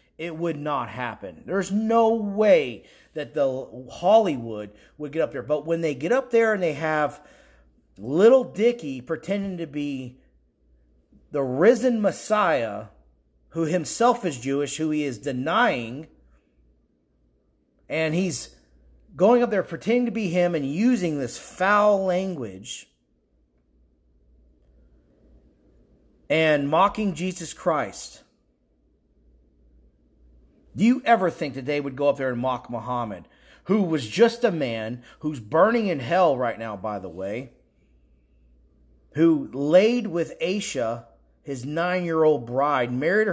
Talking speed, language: 125 wpm, English